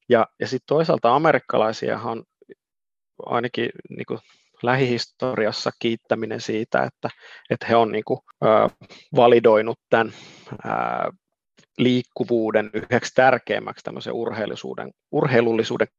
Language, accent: Finnish, native